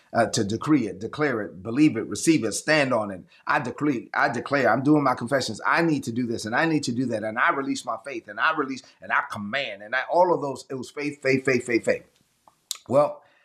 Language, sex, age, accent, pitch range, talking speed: English, male, 30-49, American, 115-145 Hz, 245 wpm